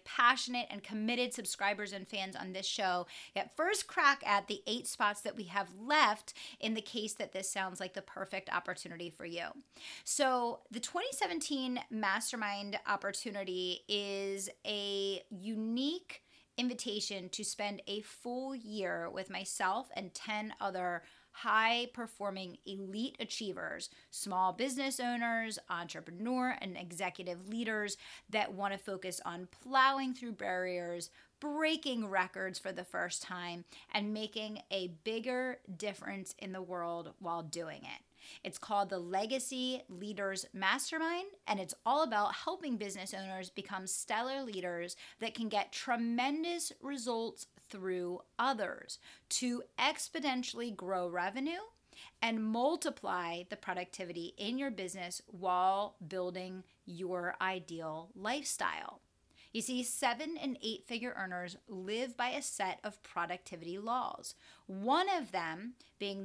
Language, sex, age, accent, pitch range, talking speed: English, female, 30-49, American, 185-245 Hz, 130 wpm